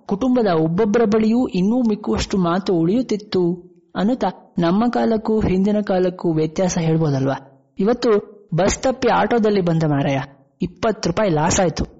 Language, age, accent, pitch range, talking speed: Kannada, 20-39, native, 155-210 Hz, 120 wpm